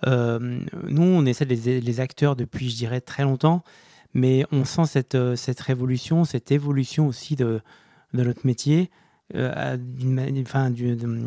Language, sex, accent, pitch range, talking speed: French, male, French, 120-140 Hz, 155 wpm